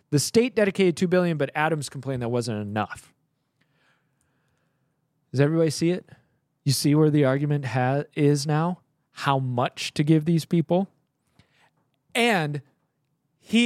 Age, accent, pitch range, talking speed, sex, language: 20-39, American, 135-165 Hz, 130 wpm, male, English